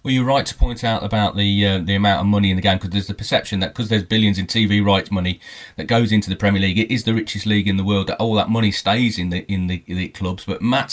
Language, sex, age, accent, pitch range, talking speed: English, male, 30-49, British, 100-140 Hz, 305 wpm